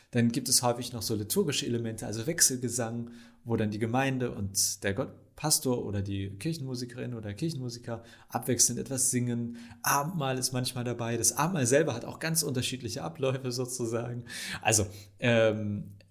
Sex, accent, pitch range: male, German, 115-135 Hz